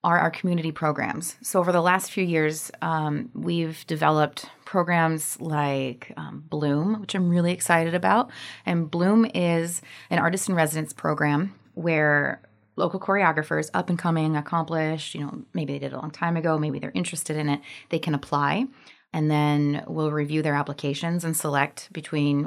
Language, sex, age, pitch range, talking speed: English, female, 20-39, 150-185 Hz, 160 wpm